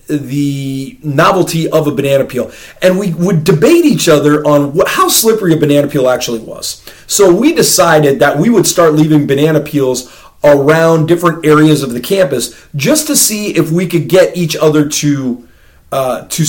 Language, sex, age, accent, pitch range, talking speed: English, male, 30-49, American, 130-160 Hz, 180 wpm